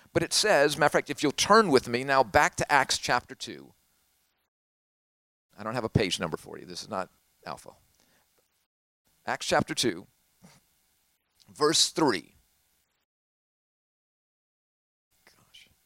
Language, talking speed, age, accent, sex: Italian, 130 wpm, 50-69, American, male